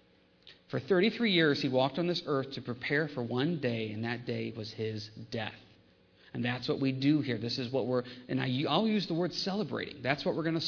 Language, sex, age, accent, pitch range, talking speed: English, male, 40-59, American, 140-215 Hz, 225 wpm